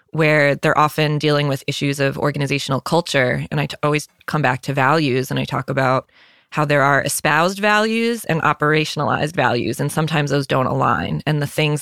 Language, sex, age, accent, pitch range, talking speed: English, female, 20-39, American, 140-165 Hz, 185 wpm